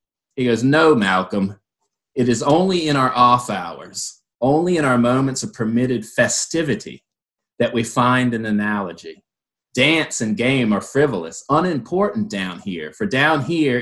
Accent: American